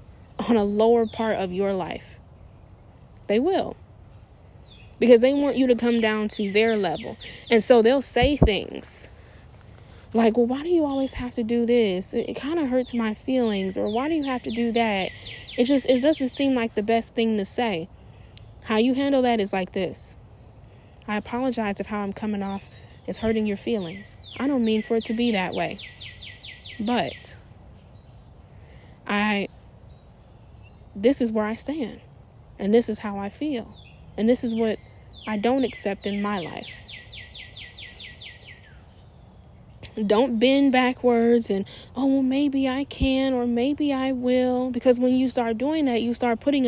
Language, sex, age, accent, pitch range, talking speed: English, female, 10-29, American, 195-250 Hz, 170 wpm